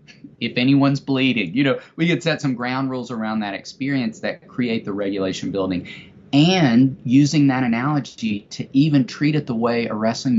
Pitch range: 110-140 Hz